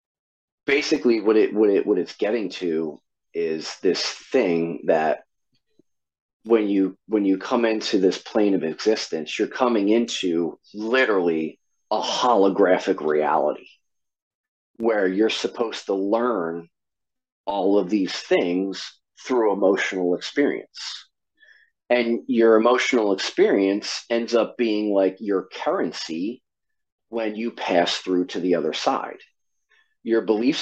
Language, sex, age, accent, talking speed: English, male, 40-59, American, 120 wpm